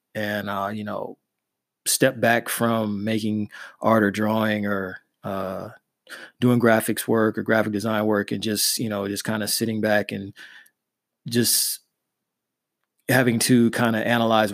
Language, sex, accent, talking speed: English, male, American, 150 wpm